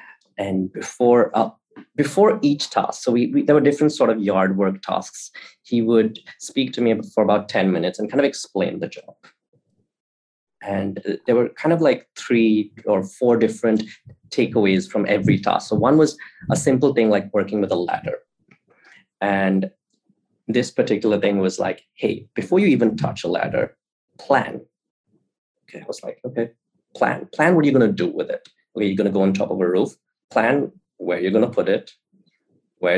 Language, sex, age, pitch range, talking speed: English, male, 20-39, 100-150 Hz, 190 wpm